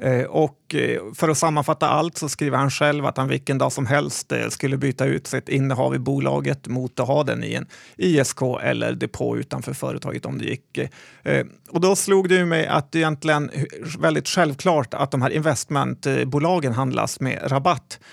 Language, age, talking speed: Swedish, 30-49, 175 wpm